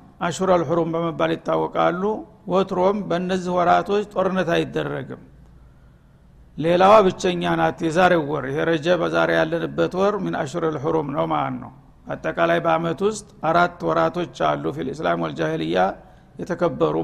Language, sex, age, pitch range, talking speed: Amharic, male, 60-79, 160-190 Hz, 115 wpm